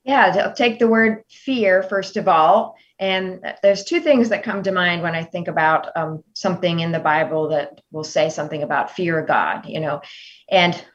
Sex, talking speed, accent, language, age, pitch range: female, 205 wpm, American, English, 30-49, 165-200 Hz